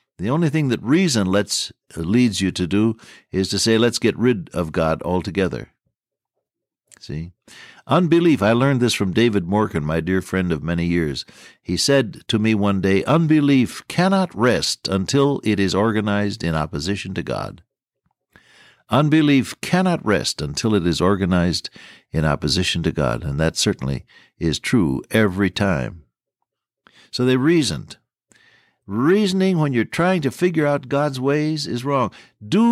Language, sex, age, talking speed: English, male, 60-79, 150 wpm